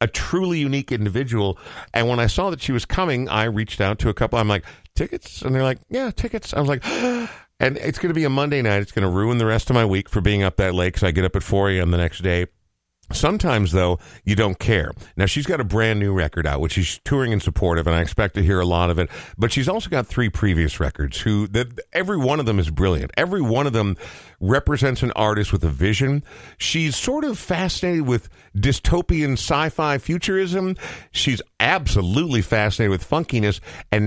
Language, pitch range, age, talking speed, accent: English, 90-125 Hz, 50-69, 220 wpm, American